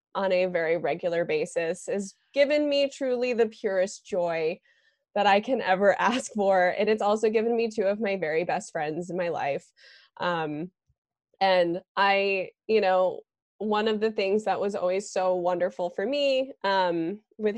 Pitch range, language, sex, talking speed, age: 185-235 Hz, English, female, 170 wpm, 20-39